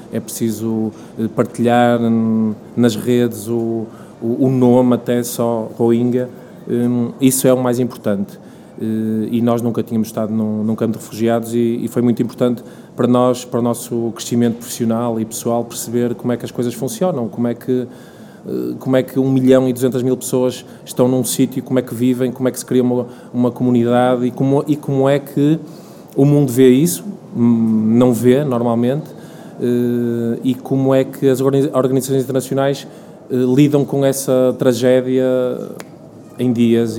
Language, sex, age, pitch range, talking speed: Portuguese, male, 20-39, 120-130 Hz, 150 wpm